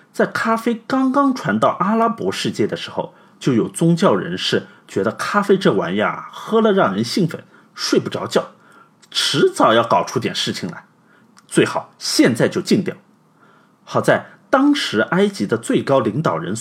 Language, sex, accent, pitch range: Chinese, male, native, 170-240 Hz